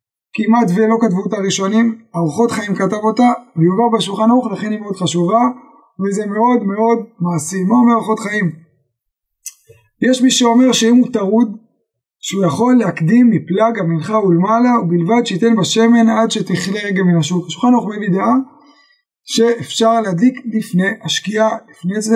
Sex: male